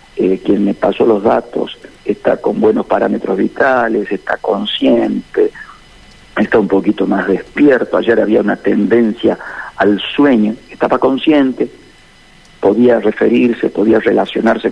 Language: Spanish